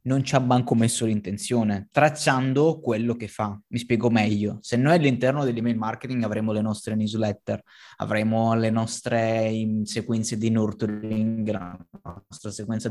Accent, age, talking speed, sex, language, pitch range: native, 20-39, 150 wpm, male, Italian, 110-130 Hz